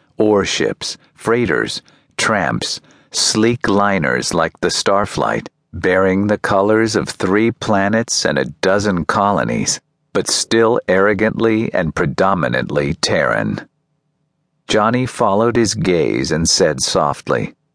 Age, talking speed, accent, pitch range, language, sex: 50-69, 105 wpm, American, 100-120 Hz, English, male